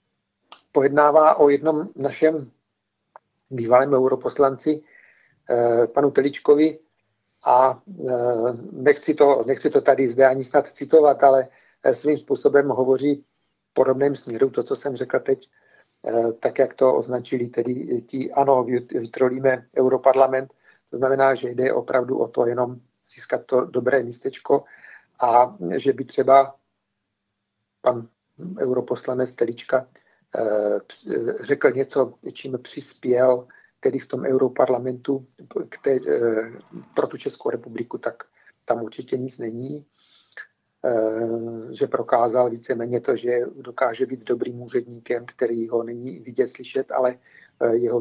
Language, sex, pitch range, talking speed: Czech, male, 120-150 Hz, 110 wpm